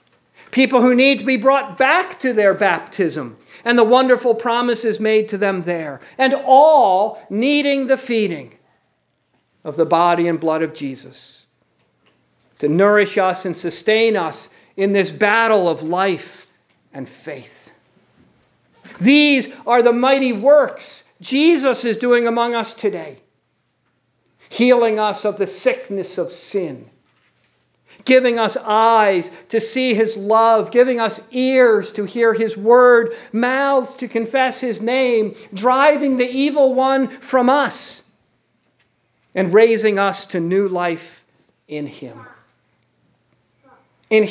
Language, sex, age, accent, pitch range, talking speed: English, male, 50-69, American, 190-250 Hz, 130 wpm